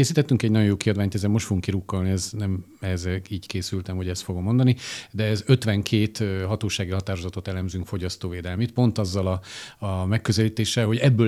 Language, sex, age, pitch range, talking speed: Hungarian, male, 50-69, 95-115 Hz, 165 wpm